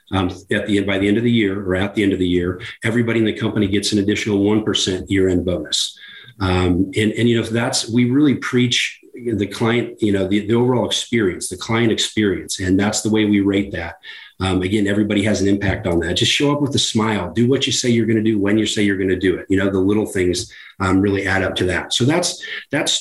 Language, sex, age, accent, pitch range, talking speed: English, male, 40-59, American, 100-120 Hz, 255 wpm